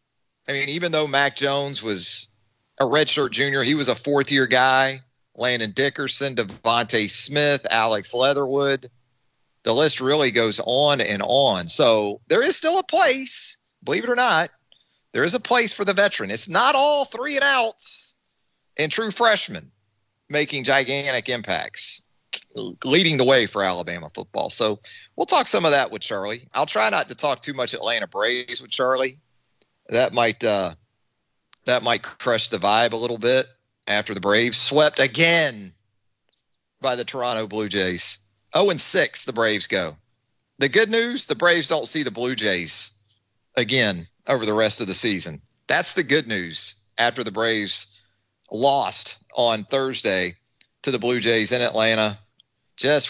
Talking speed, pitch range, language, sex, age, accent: 160 wpm, 110-140 Hz, English, male, 30-49, American